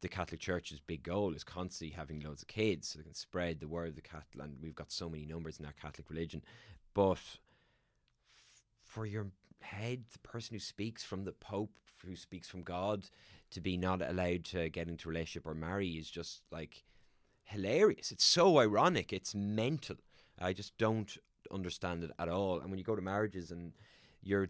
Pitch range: 80-95 Hz